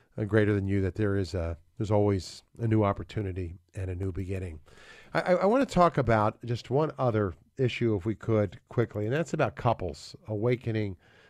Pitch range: 105-135 Hz